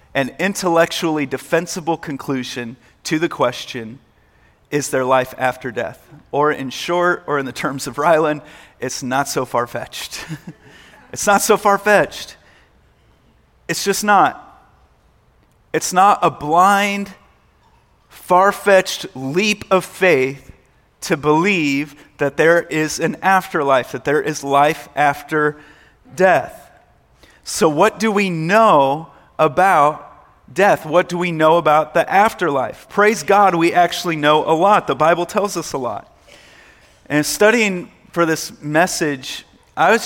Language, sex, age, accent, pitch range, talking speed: English, male, 30-49, American, 140-180 Hz, 130 wpm